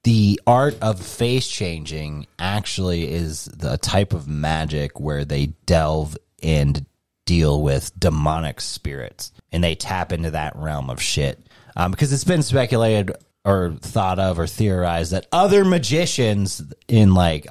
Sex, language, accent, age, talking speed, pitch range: male, English, American, 30-49, 145 wpm, 80-110 Hz